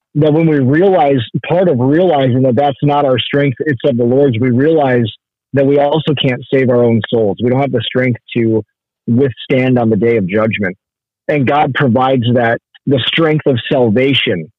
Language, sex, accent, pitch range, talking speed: English, male, American, 120-150 Hz, 190 wpm